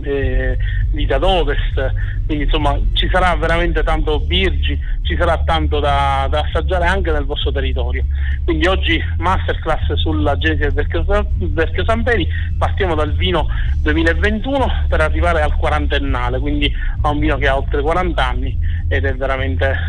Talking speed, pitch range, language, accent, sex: 145 wpm, 75-100 Hz, Italian, native, male